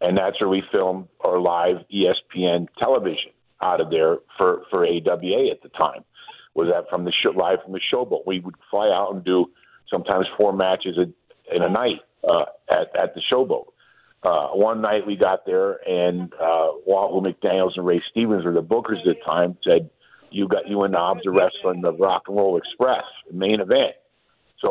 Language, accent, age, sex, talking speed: English, American, 50-69, male, 190 wpm